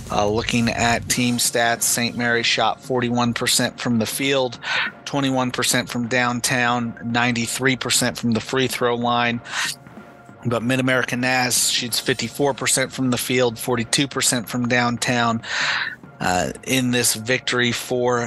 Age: 40-59